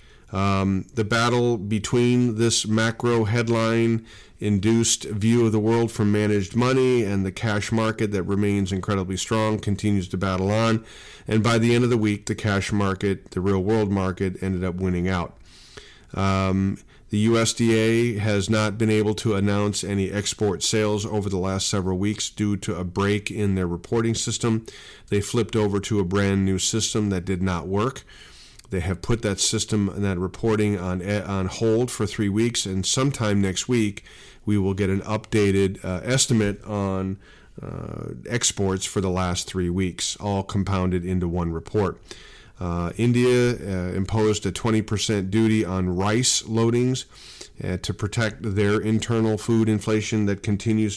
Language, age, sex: English, 40-59, male